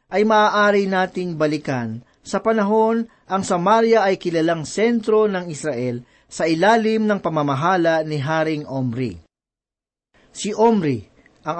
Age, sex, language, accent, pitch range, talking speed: 50-69, male, Filipino, native, 150-210 Hz, 120 wpm